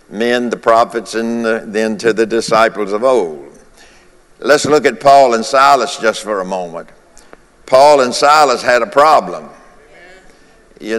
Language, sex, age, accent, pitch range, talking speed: English, male, 60-79, American, 115-140 Hz, 145 wpm